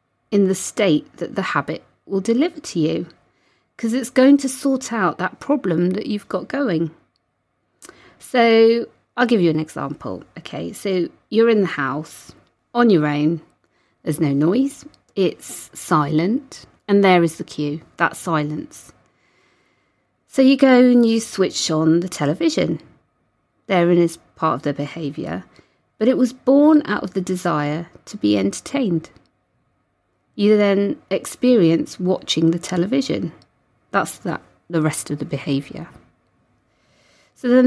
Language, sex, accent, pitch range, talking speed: English, female, British, 160-235 Hz, 145 wpm